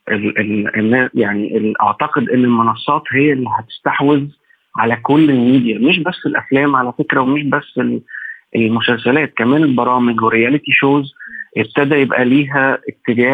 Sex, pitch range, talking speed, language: male, 115-140 Hz, 130 wpm, Arabic